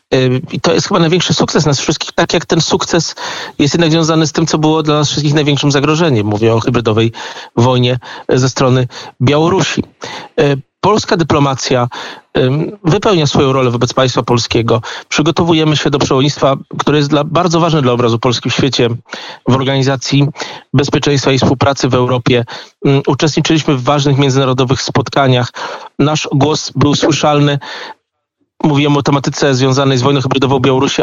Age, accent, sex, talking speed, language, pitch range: 40-59, native, male, 150 wpm, Polish, 135-155 Hz